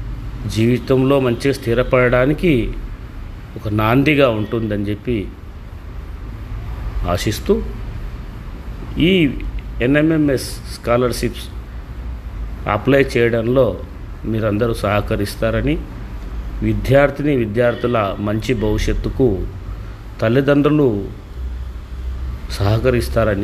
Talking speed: 55 wpm